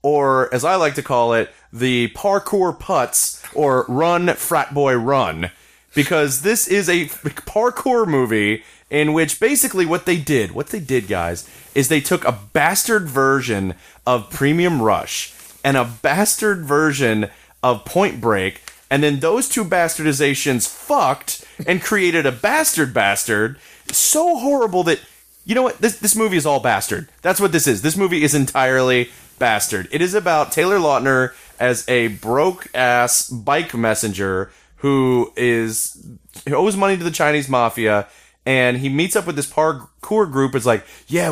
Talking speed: 160 wpm